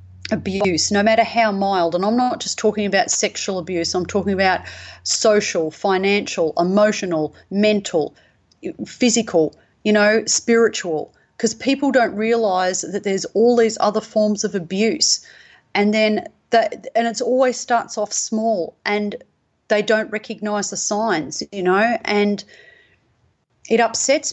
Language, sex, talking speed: English, female, 140 wpm